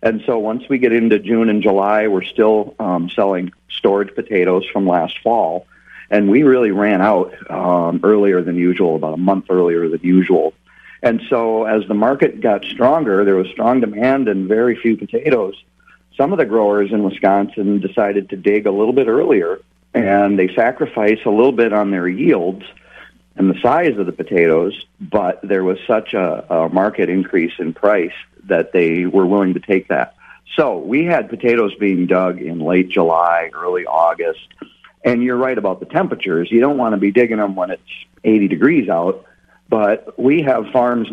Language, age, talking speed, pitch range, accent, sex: English, 40-59, 185 wpm, 95-110 Hz, American, male